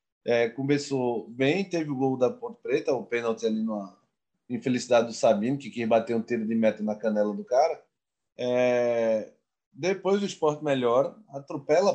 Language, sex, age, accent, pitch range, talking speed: Portuguese, male, 20-39, Brazilian, 130-185 Hz, 165 wpm